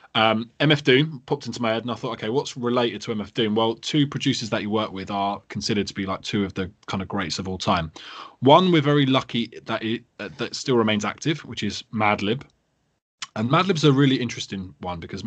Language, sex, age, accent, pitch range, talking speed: English, male, 20-39, British, 100-125 Hz, 225 wpm